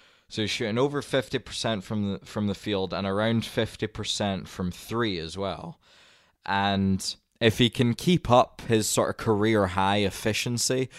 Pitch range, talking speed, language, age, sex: 95-110 Hz, 155 wpm, English, 20-39, male